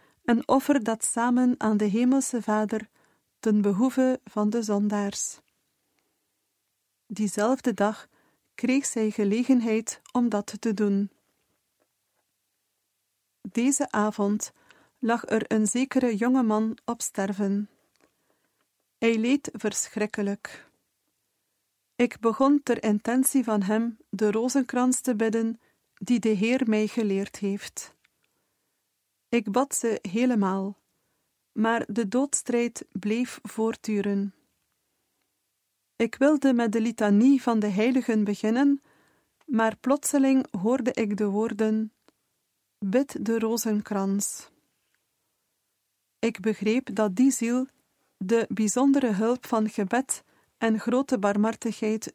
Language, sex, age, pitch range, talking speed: Dutch, female, 40-59, 210-250 Hz, 105 wpm